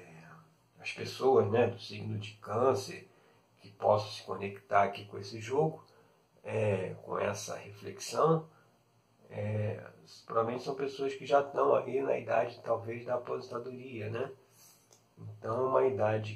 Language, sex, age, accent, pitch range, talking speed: Portuguese, male, 40-59, Brazilian, 110-140 Hz, 130 wpm